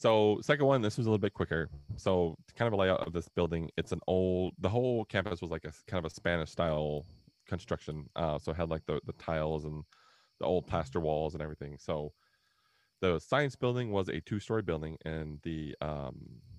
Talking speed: 215 wpm